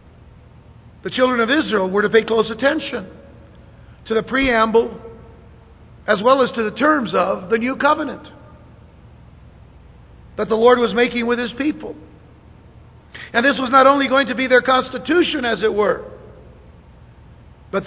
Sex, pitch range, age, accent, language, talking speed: male, 210-255 Hz, 50-69, American, English, 150 wpm